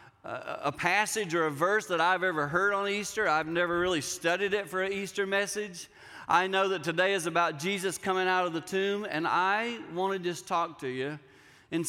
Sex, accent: male, American